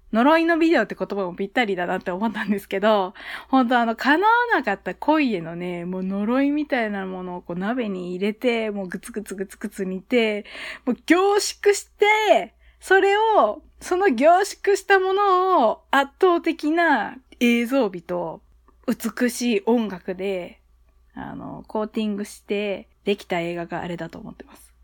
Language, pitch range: Japanese, 195-305 Hz